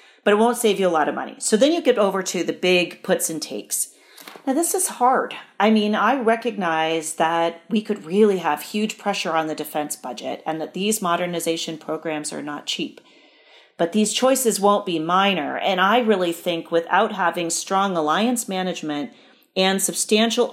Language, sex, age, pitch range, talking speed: English, female, 40-59, 165-220 Hz, 185 wpm